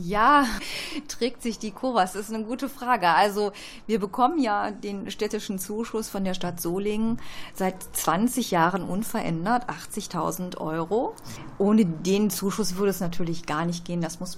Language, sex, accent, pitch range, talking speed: German, female, German, 170-205 Hz, 160 wpm